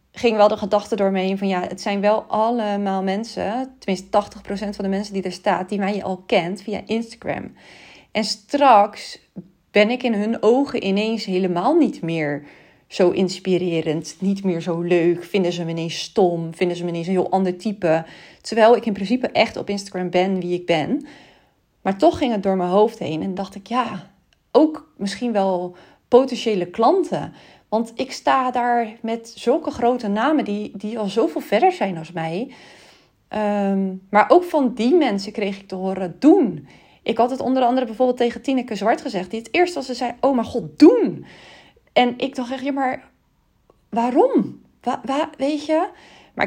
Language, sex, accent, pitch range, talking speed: Dutch, female, Dutch, 190-250 Hz, 185 wpm